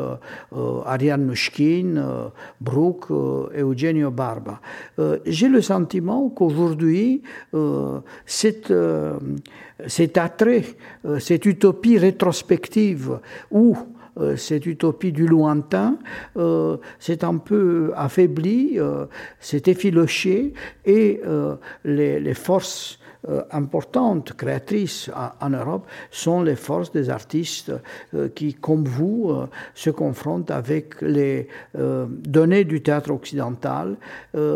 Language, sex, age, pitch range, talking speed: French, male, 60-79, 140-185 Hz, 110 wpm